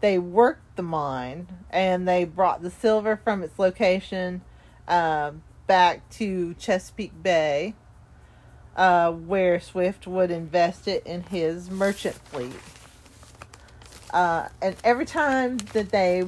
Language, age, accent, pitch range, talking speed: English, 40-59, American, 170-210 Hz, 120 wpm